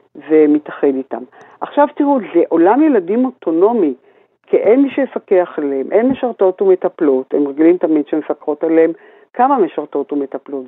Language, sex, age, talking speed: Hebrew, female, 50-69, 140 wpm